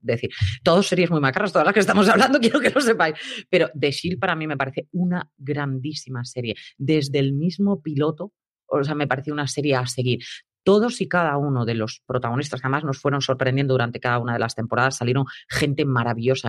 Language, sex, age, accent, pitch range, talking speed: Spanish, female, 30-49, Spanish, 130-160 Hz, 205 wpm